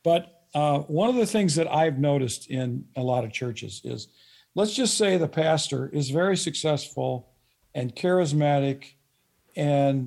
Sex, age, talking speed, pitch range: male, 50-69, 155 wpm, 135-175 Hz